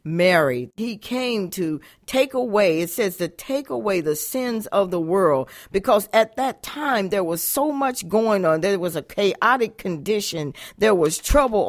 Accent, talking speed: American, 170 wpm